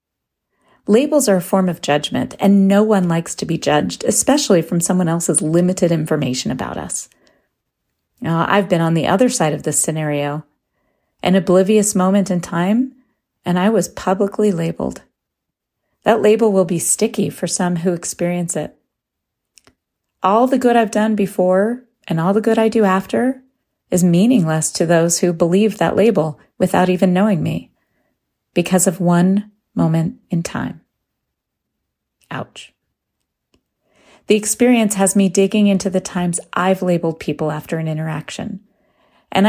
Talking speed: 145 wpm